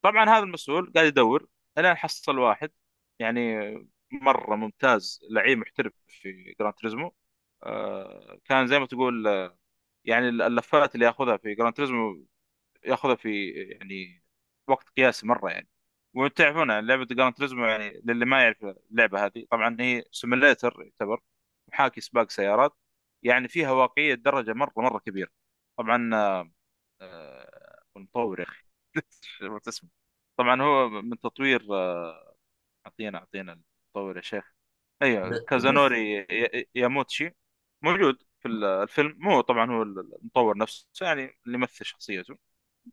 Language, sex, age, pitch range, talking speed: Arabic, male, 30-49, 105-135 Hz, 125 wpm